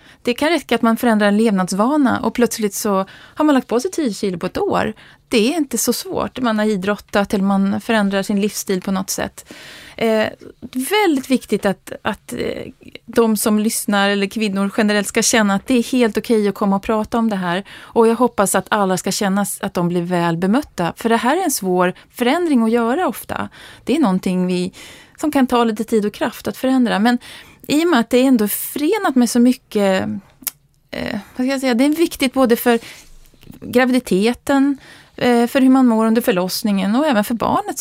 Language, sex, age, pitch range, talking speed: Swedish, female, 30-49, 200-255 Hz, 210 wpm